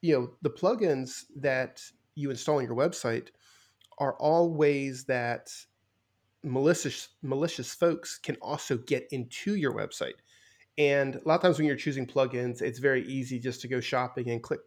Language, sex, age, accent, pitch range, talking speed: English, male, 30-49, American, 120-150 Hz, 170 wpm